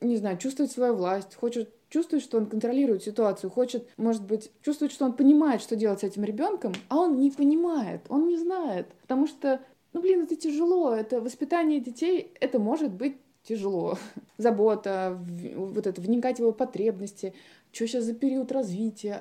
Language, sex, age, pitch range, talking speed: Russian, female, 20-39, 200-260 Hz, 170 wpm